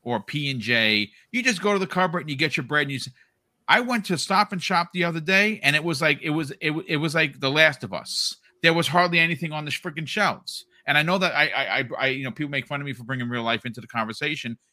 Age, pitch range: 40-59, 120-165 Hz